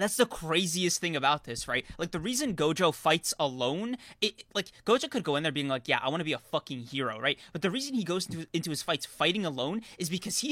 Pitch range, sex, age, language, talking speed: 150-200 Hz, male, 20-39, English, 255 wpm